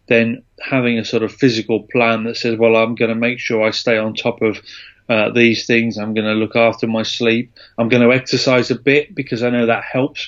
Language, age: English, 30-49